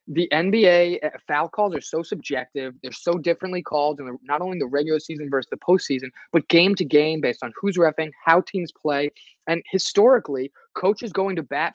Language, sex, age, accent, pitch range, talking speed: English, male, 20-39, American, 150-190 Hz, 190 wpm